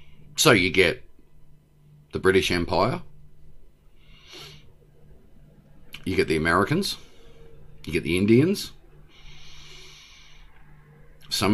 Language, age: English, 40-59